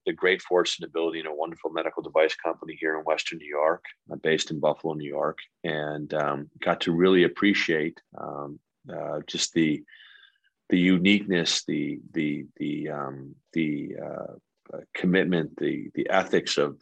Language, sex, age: English, male, 30-49